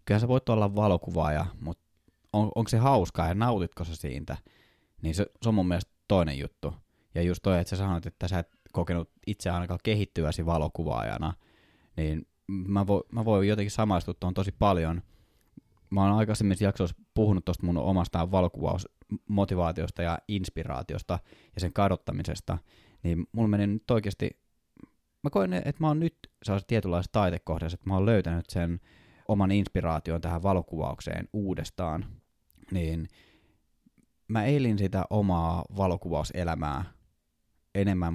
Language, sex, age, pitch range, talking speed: Finnish, male, 20-39, 85-105 Hz, 145 wpm